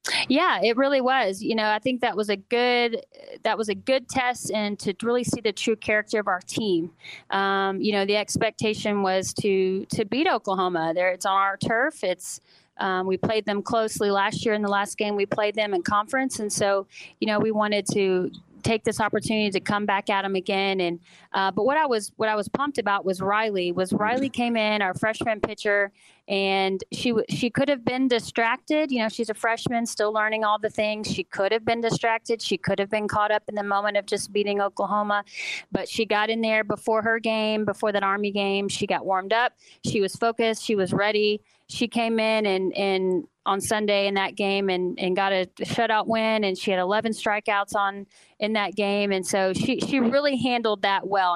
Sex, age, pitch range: female, 30-49, 195-225 Hz